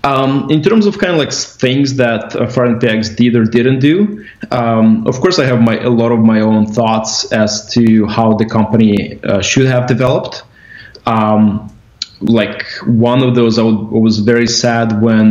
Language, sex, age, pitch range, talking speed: English, male, 20-39, 110-125 Hz, 185 wpm